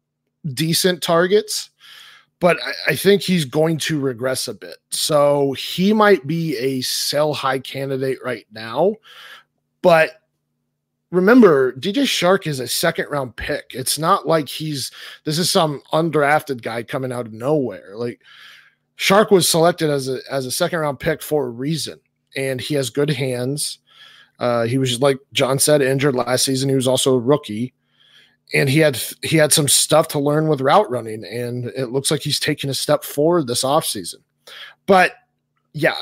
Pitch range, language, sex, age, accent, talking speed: 130-160 Hz, English, male, 30-49, American, 175 wpm